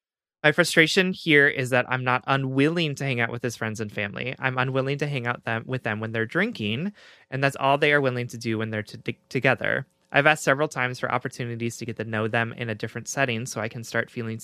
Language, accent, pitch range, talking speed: English, American, 115-145 Hz, 235 wpm